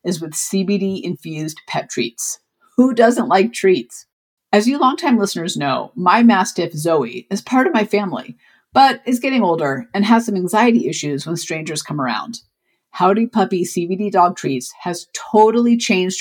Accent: American